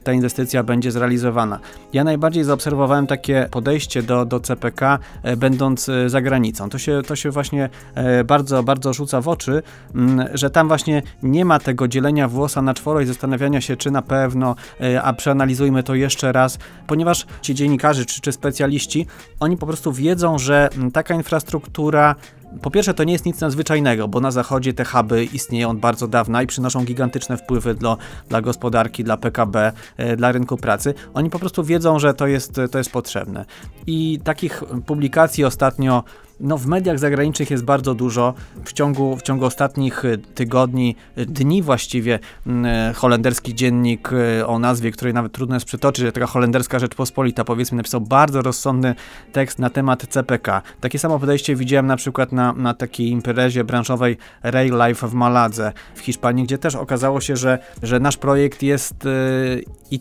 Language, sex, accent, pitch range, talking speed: Polish, male, native, 125-140 Hz, 160 wpm